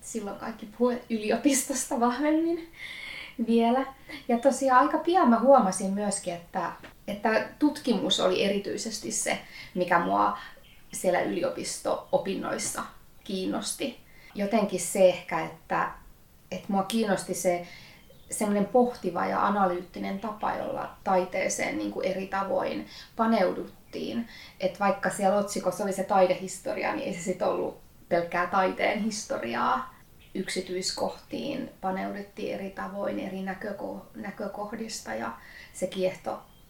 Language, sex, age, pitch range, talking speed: Finnish, female, 20-39, 190-250 Hz, 110 wpm